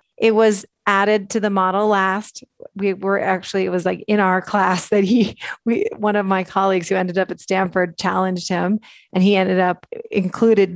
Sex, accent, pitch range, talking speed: female, American, 185-210 Hz, 195 wpm